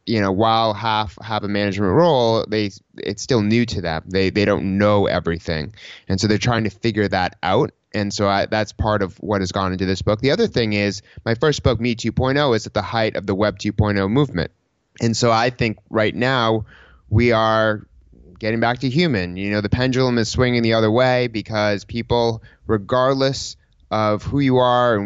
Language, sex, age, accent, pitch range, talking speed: English, male, 20-39, American, 100-115 Hz, 205 wpm